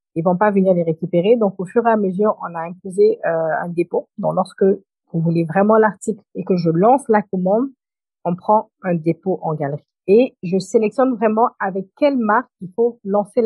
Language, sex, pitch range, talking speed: French, female, 175-215 Hz, 210 wpm